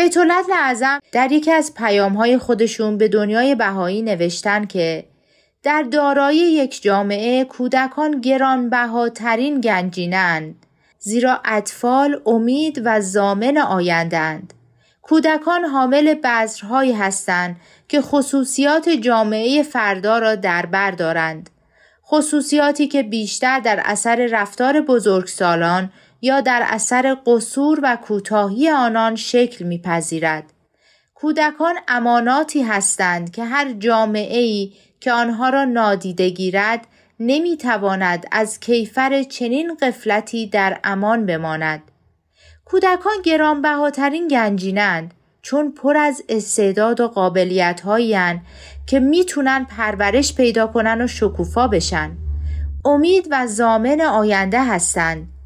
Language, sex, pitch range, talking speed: Persian, female, 195-270 Hz, 100 wpm